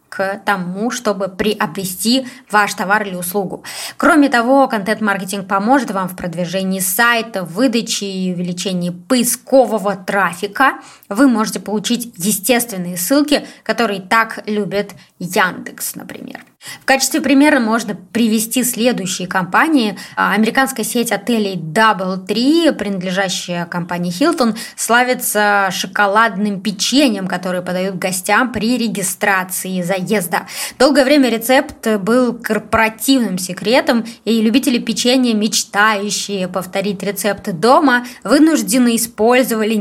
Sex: female